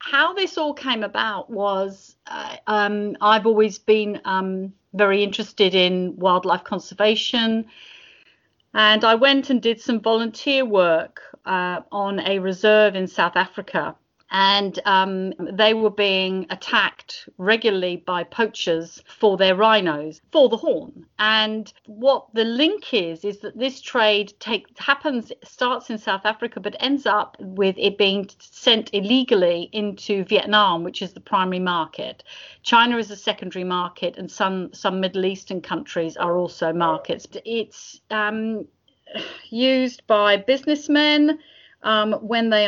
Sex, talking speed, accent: female, 140 wpm, British